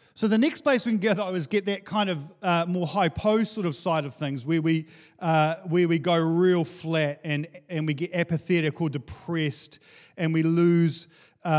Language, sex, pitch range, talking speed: English, male, 150-185 Hz, 200 wpm